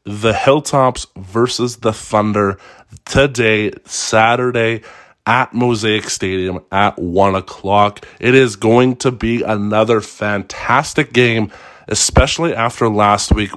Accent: American